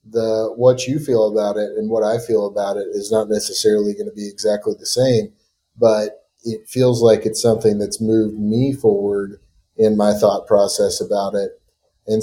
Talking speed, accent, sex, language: 185 wpm, American, male, English